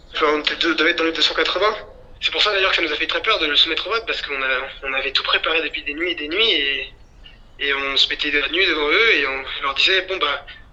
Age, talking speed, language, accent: 20-39, 300 wpm, French, French